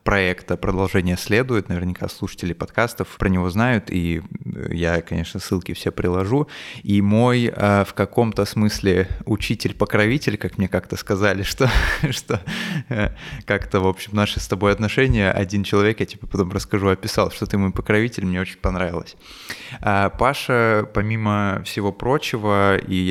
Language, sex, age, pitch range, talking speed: Russian, male, 20-39, 90-105 Hz, 140 wpm